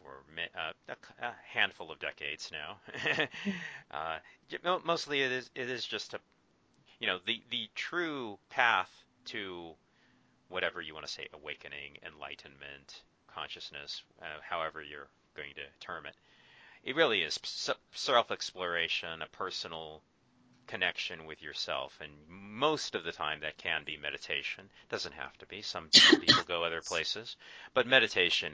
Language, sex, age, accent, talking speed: English, male, 40-59, American, 135 wpm